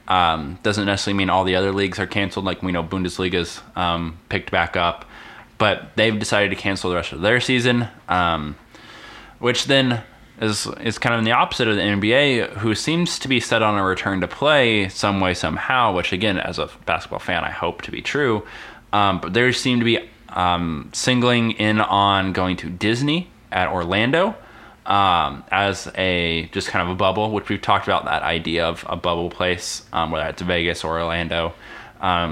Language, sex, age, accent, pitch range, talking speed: English, male, 20-39, American, 90-110 Hz, 195 wpm